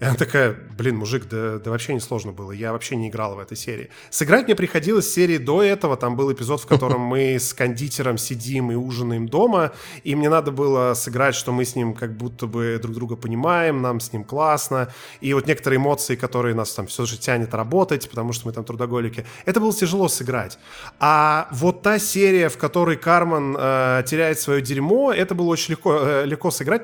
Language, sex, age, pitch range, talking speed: Russian, male, 20-39, 125-160 Hz, 210 wpm